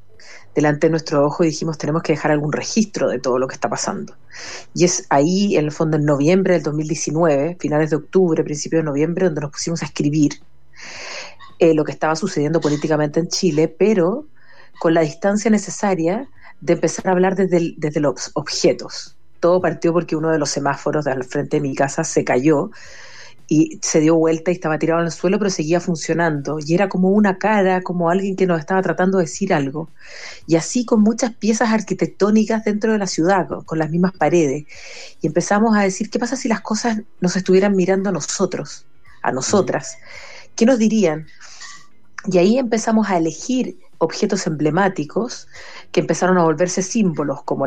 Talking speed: 185 wpm